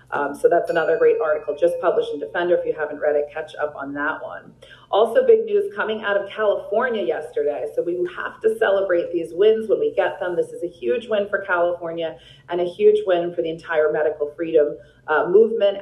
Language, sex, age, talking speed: English, female, 40-59, 215 wpm